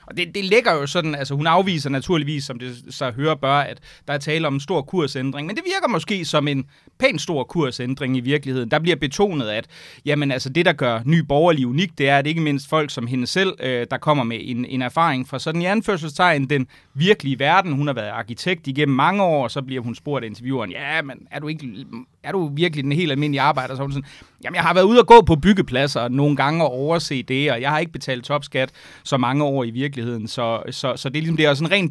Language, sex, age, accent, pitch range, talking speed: Danish, male, 30-49, native, 135-165 Hz, 245 wpm